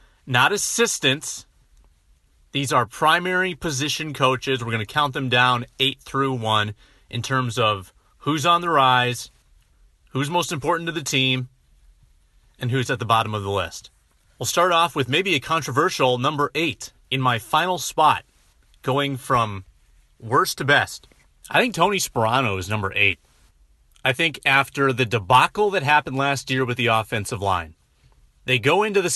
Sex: male